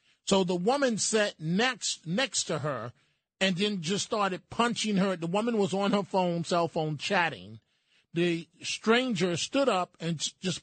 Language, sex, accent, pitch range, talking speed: English, male, American, 155-195 Hz, 165 wpm